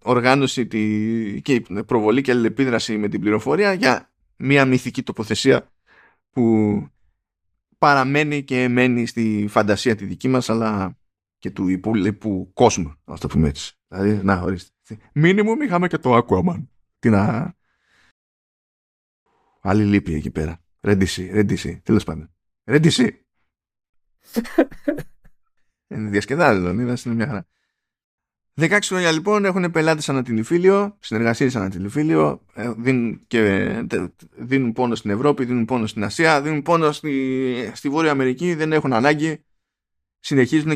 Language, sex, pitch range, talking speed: Greek, male, 100-140 Hz, 125 wpm